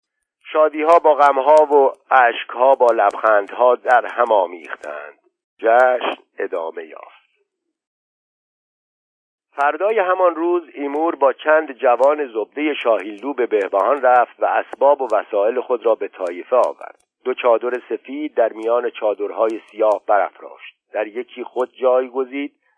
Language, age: Persian, 50-69